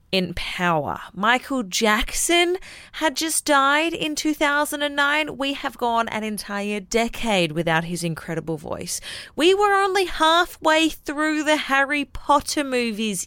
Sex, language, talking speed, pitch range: female, English, 125 wpm, 185-280 Hz